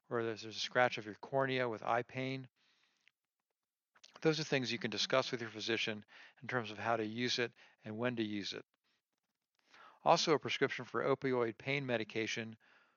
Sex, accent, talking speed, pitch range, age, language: male, American, 175 wpm, 110-130 Hz, 50-69, English